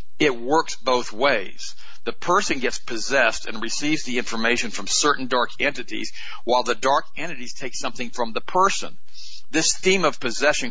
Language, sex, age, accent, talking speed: English, male, 50-69, American, 165 wpm